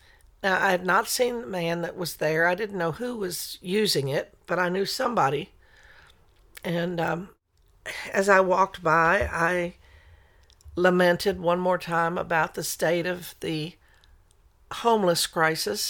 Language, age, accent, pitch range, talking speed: English, 50-69, American, 150-190 Hz, 145 wpm